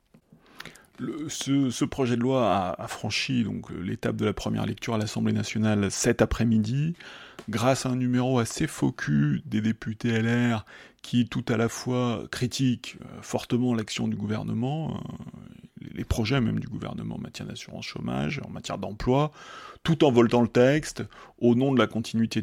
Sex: male